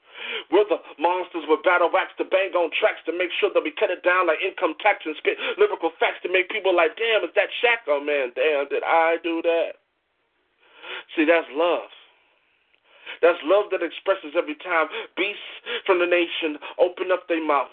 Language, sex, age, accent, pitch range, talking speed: English, male, 40-59, American, 165-215 Hz, 195 wpm